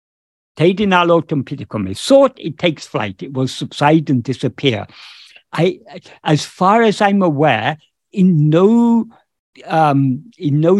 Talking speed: 95 wpm